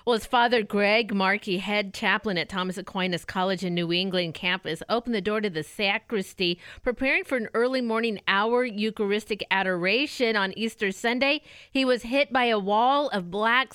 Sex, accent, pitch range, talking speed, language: female, American, 195-240 Hz, 175 wpm, English